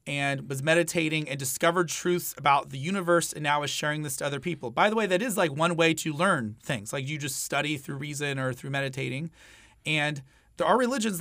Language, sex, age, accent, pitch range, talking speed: English, male, 30-49, American, 145-190 Hz, 220 wpm